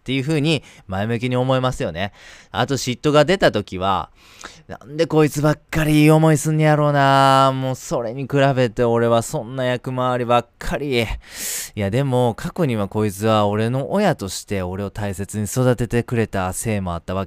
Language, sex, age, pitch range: Japanese, male, 20-39, 100-140 Hz